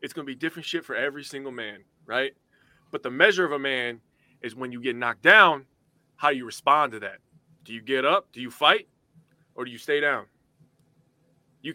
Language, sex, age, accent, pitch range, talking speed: English, male, 20-39, American, 145-195 Hz, 210 wpm